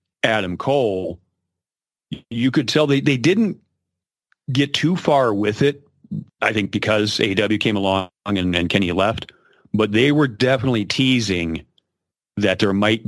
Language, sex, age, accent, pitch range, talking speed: English, male, 40-59, American, 95-120 Hz, 140 wpm